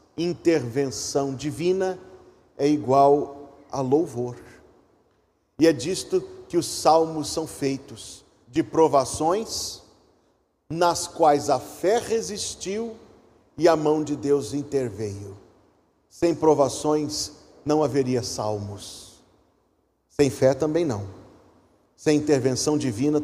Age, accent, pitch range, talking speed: 40-59, Brazilian, 125-160 Hz, 100 wpm